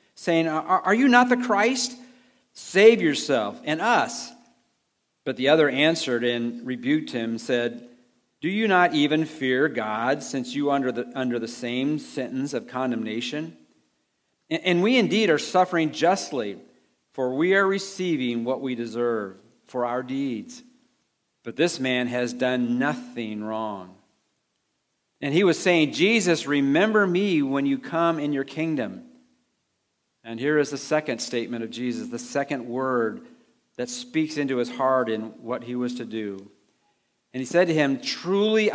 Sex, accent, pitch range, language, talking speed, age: male, American, 120-170 Hz, English, 155 wpm, 50-69